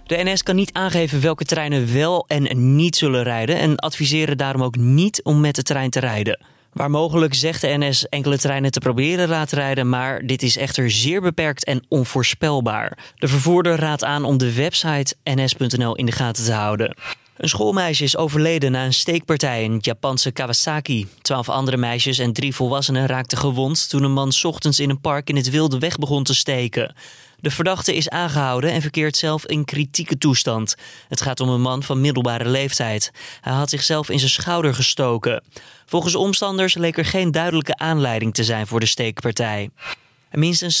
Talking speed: 185 wpm